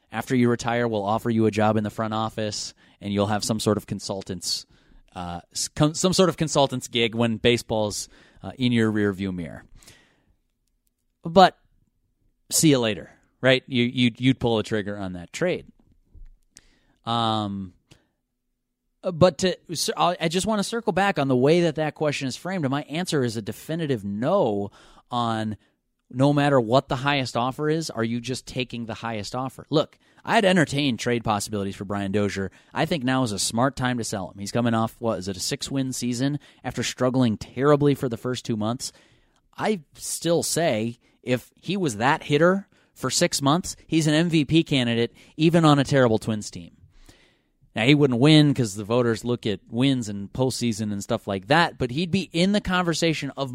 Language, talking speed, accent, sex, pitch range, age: English, 185 wpm, American, male, 110-150 Hz, 30-49